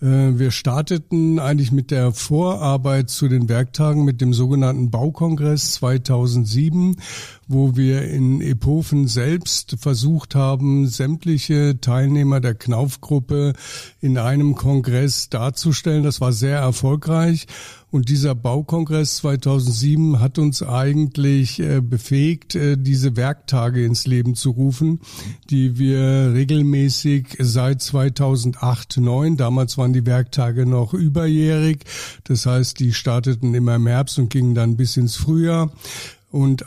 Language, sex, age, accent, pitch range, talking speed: German, male, 60-79, German, 125-145 Hz, 120 wpm